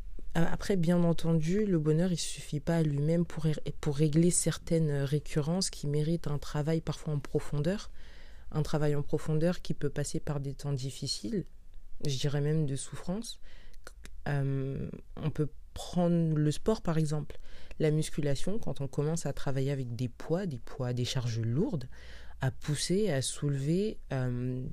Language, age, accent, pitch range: French, 20-39, French, 130-155 Hz